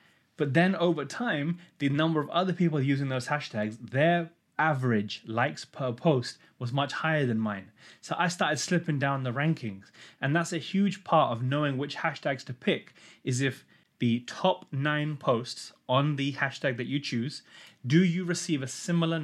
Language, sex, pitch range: English, male, 125-165 Hz